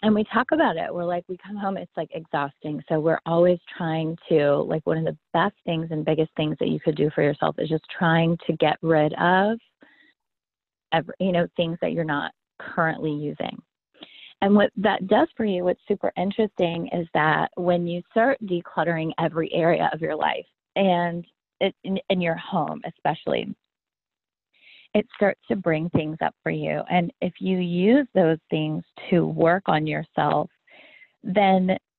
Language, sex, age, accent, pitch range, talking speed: English, female, 30-49, American, 160-190 Hz, 180 wpm